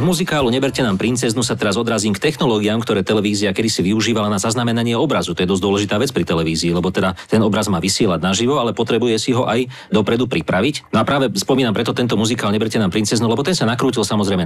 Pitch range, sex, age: 100-125 Hz, male, 40-59